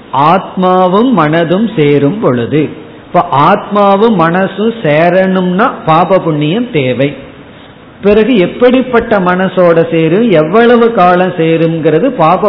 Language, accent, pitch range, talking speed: Tamil, native, 150-195 Hz, 70 wpm